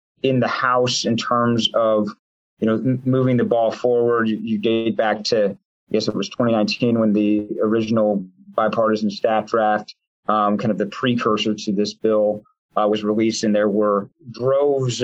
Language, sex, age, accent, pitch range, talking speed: English, male, 30-49, American, 110-125 Hz, 170 wpm